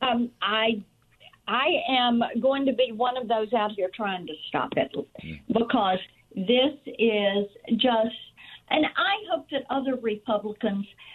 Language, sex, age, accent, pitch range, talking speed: English, female, 50-69, American, 210-260 Hz, 140 wpm